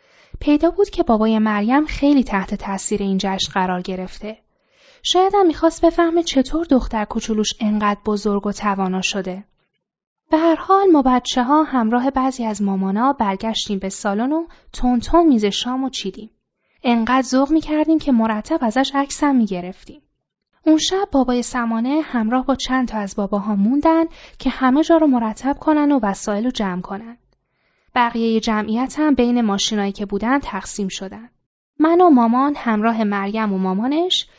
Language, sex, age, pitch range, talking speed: Persian, female, 10-29, 205-290 Hz, 150 wpm